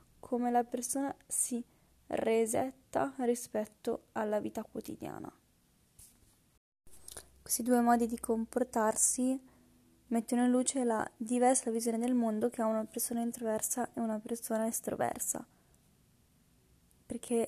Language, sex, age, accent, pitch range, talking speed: Italian, female, 10-29, native, 225-245 Hz, 110 wpm